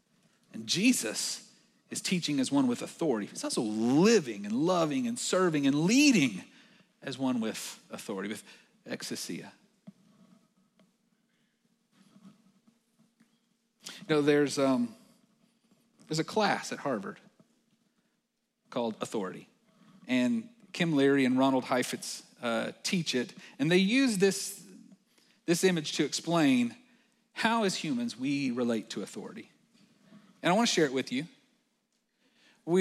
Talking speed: 120 wpm